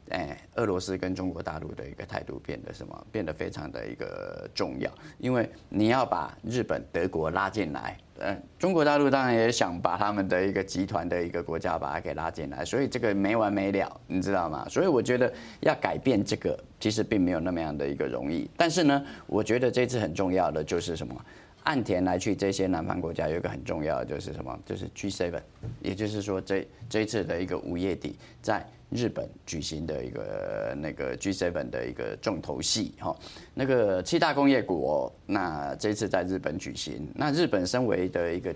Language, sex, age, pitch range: Chinese, male, 20-39, 90-120 Hz